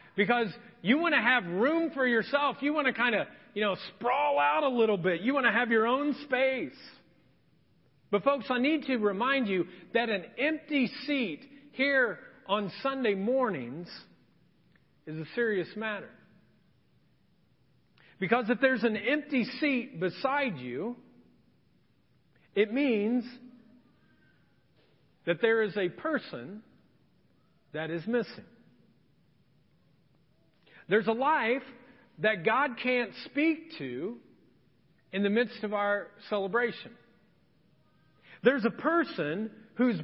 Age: 40-59